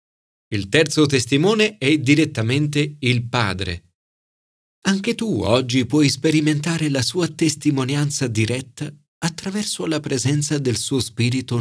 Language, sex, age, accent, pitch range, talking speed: Italian, male, 40-59, native, 110-155 Hz, 115 wpm